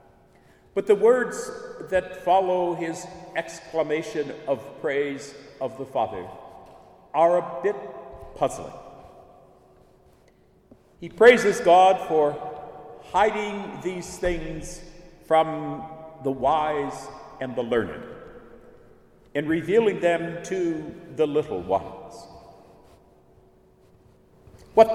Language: English